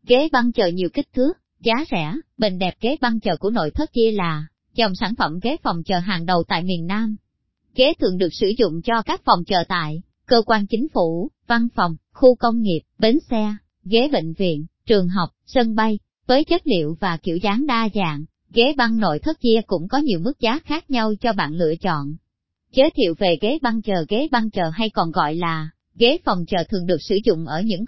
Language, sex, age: Vietnamese, male, 20-39